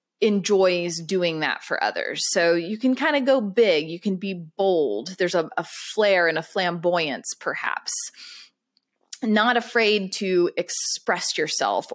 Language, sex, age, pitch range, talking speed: English, female, 20-39, 170-230 Hz, 145 wpm